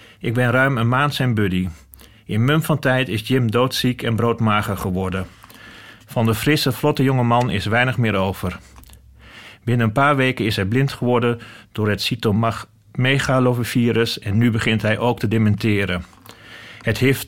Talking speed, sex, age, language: 160 wpm, male, 40-59, Dutch